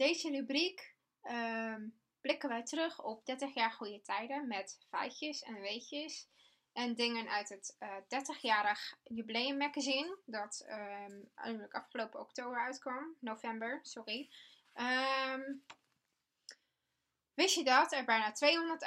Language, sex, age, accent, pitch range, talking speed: English, female, 10-29, Dutch, 230-280 Hz, 110 wpm